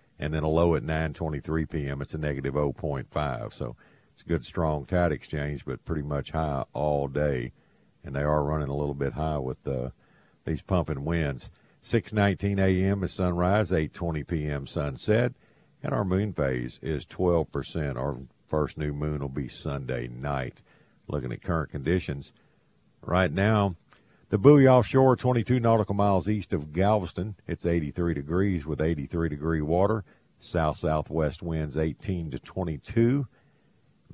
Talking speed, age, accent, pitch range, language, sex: 150 wpm, 50-69, American, 75-95 Hz, English, male